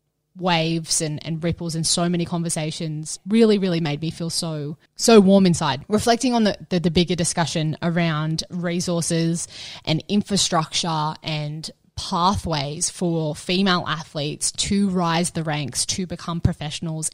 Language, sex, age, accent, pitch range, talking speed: English, female, 20-39, Australian, 155-180 Hz, 140 wpm